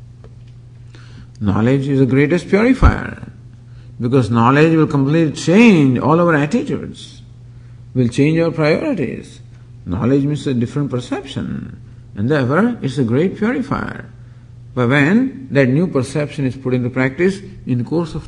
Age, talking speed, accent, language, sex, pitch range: 50-69, 135 wpm, Indian, English, male, 120-155 Hz